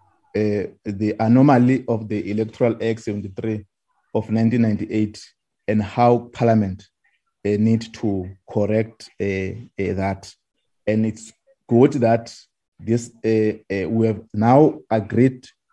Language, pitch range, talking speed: English, 105-125 Hz, 120 wpm